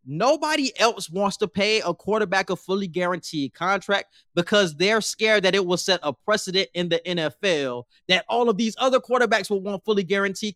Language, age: English, 20-39